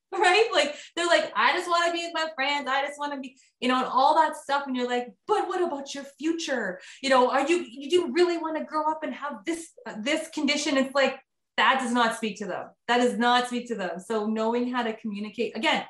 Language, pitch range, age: English, 205-270 Hz, 20-39